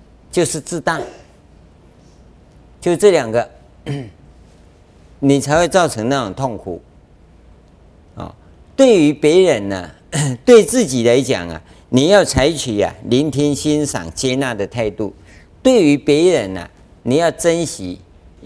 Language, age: Chinese, 50-69